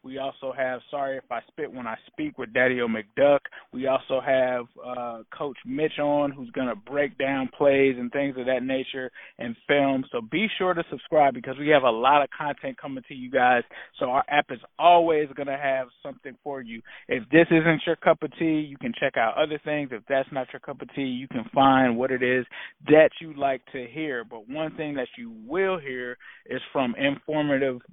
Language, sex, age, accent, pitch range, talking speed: English, male, 20-39, American, 130-155 Hz, 220 wpm